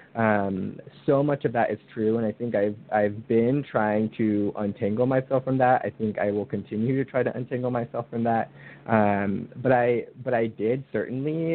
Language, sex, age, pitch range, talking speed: English, male, 20-39, 100-120 Hz, 200 wpm